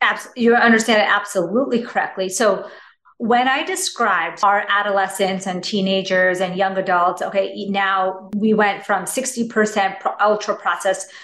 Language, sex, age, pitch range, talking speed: English, female, 30-49, 185-215 Hz, 130 wpm